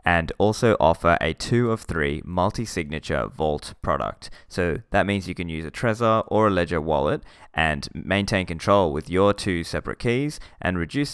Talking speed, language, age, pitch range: 170 wpm, English, 20-39, 80-100 Hz